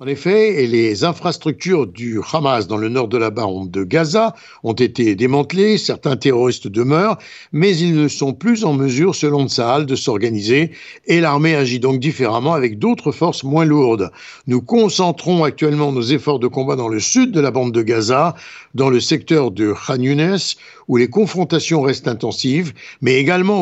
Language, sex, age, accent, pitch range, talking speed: French, male, 60-79, French, 130-175 Hz, 180 wpm